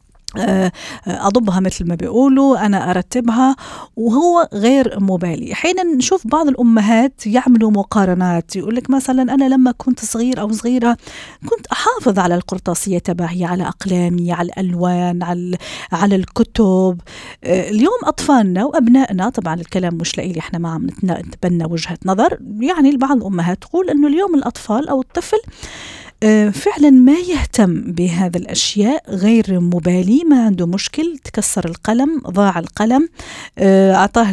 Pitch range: 180-255 Hz